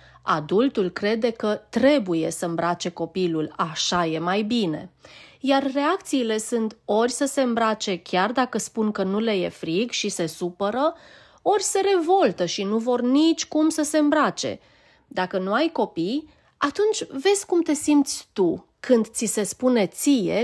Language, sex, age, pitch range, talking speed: Romanian, female, 30-49, 195-280 Hz, 160 wpm